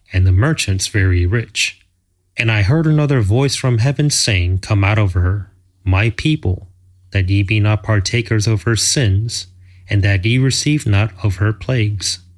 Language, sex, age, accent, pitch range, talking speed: English, male, 30-49, American, 95-115 Hz, 170 wpm